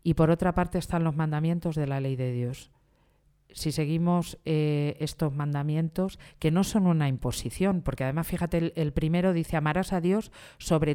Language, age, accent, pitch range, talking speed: Spanish, 40-59, Spanish, 140-165 Hz, 180 wpm